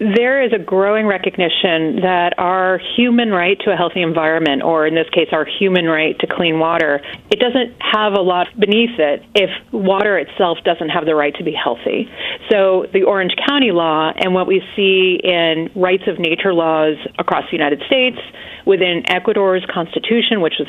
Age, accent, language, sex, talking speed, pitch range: 30-49, American, English, female, 185 wpm, 165-205 Hz